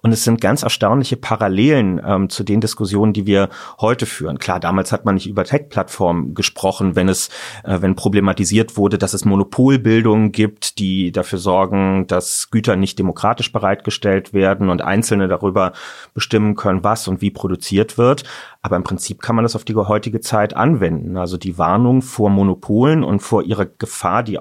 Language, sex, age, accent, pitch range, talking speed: German, male, 30-49, German, 95-115 Hz, 175 wpm